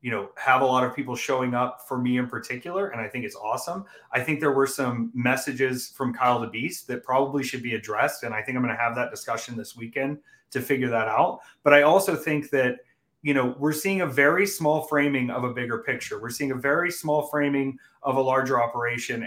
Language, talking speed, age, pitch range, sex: English, 235 wpm, 30-49, 125-155 Hz, male